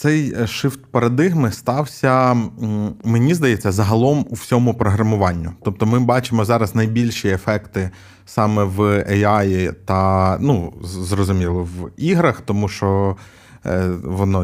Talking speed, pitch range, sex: 110 wpm, 100-125 Hz, male